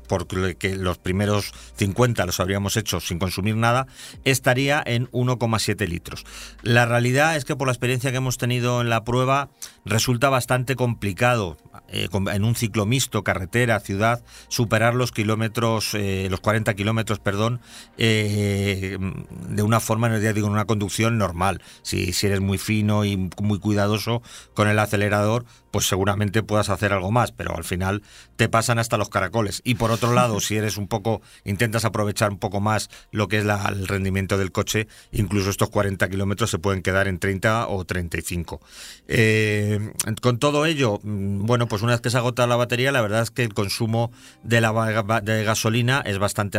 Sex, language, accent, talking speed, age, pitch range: male, Spanish, Spanish, 175 wpm, 40-59, 100-120 Hz